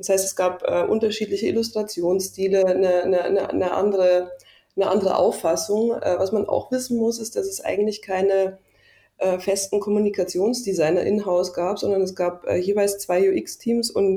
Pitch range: 185-220 Hz